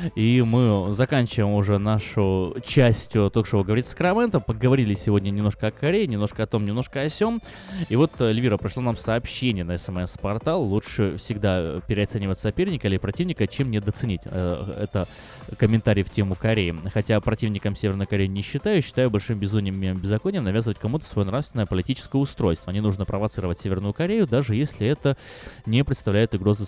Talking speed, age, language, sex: 160 wpm, 20-39, Russian, male